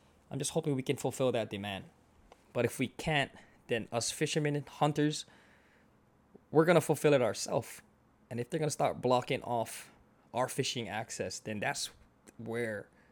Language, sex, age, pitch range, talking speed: English, male, 20-39, 115-155 Hz, 170 wpm